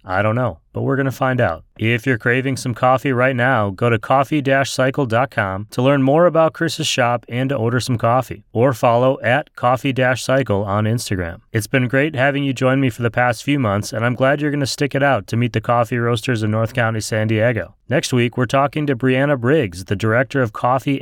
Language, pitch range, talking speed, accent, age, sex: English, 110-135 Hz, 225 wpm, American, 30-49, male